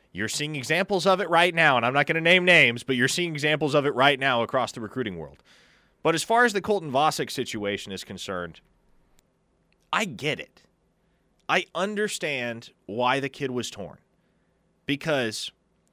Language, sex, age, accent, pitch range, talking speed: English, male, 30-49, American, 125-170 Hz, 175 wpm